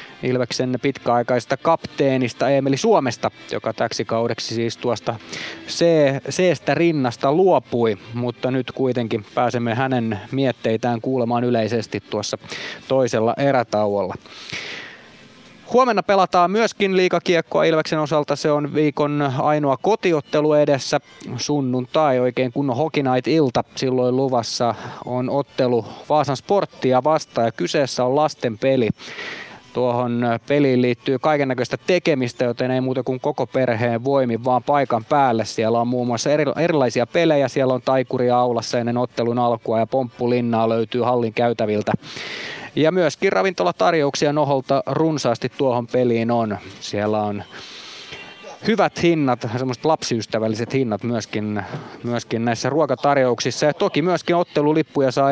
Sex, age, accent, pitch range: male, 20-39, native, 120-145 Hz